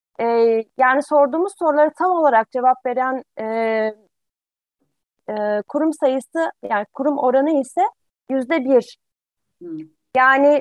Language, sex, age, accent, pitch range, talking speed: Turkish, female, 30-49, native, 235-295 Hz, 100 wpm